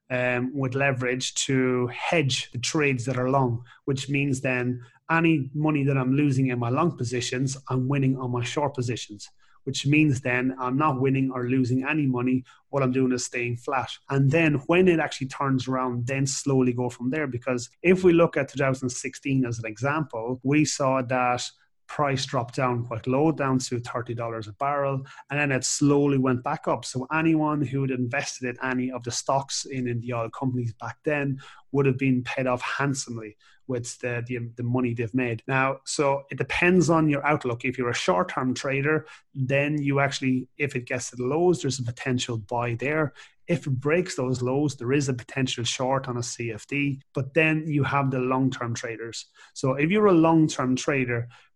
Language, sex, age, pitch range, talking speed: English, male, 30-49, 125-140 Hz, 195 wpm